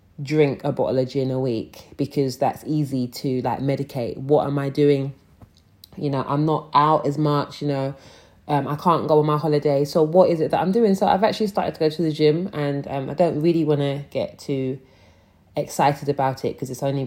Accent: British